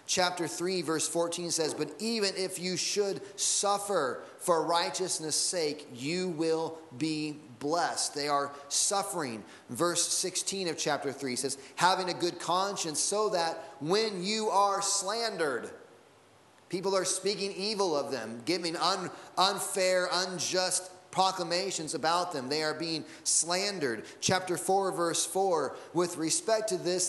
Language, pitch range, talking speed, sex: English, 160-190 Hz, 135 wpm, male